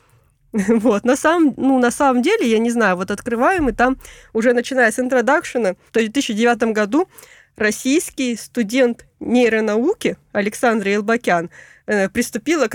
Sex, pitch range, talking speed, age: female, 205-245 Hz, 125 wpm, 20-39